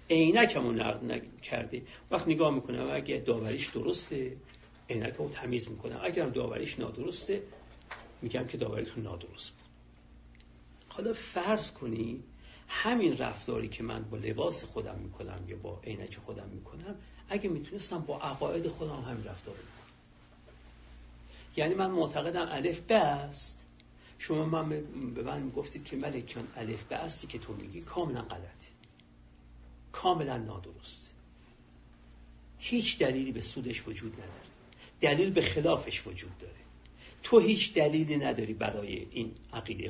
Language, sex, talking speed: Persian, male, 130 wpm